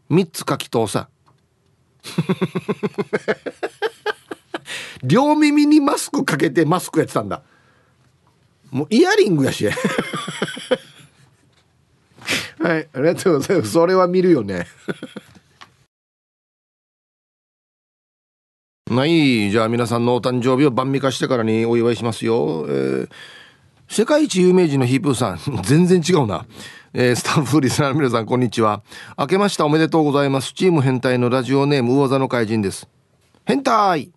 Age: 40-59